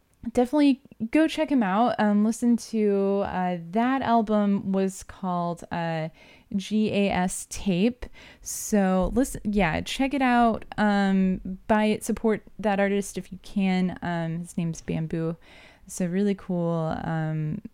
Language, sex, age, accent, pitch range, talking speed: English, female, 20-39, American, 180-225 Hz, 130 wpm